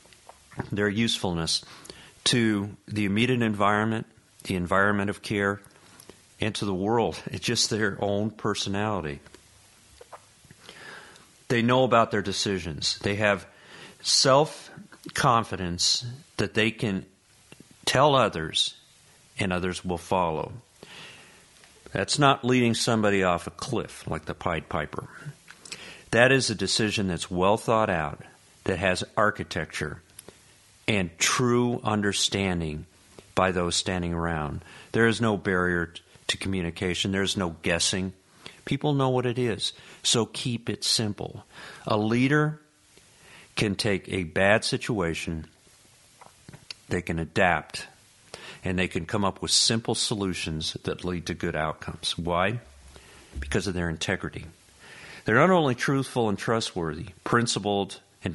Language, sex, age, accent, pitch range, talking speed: English, male, 50-69, American, 90-115 Hz, 125 wpm